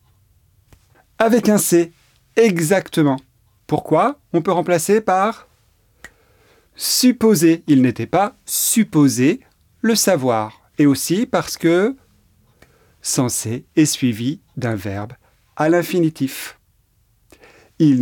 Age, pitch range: 40-59, 115-180 Hz